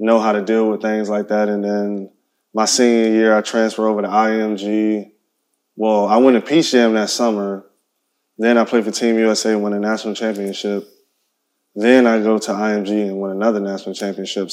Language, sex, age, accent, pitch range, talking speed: English, male, 20-39, American, 105-115 Hz, 195 wpm